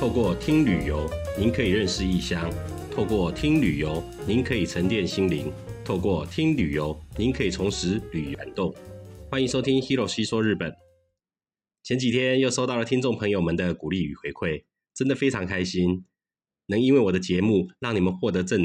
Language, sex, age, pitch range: Chinese, male, 30-49, 90-125 Hz